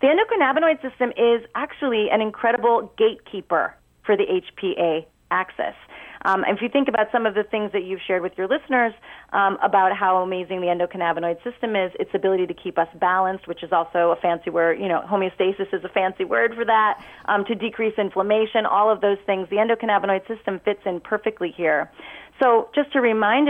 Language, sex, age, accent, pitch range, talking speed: English, female, 30-49, American, 185-225 Hz, 190 wpm